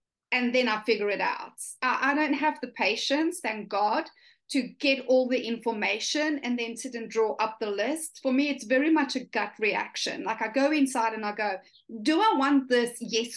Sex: female